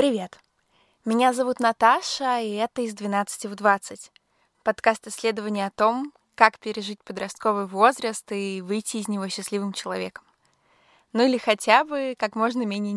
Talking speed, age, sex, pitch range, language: 145 wpm, 20-39, female, 200-240 Hz, Russian